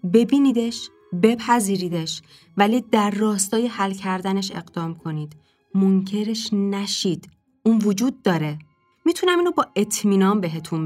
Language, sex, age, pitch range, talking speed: Persian, female, 20-39, 190-245 Hz, 105 wpm